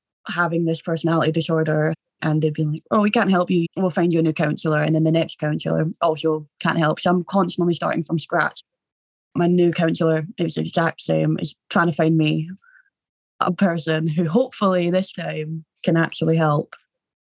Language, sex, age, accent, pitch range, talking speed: English, female, 20-39, British, 155-175 Hz, 185 wpm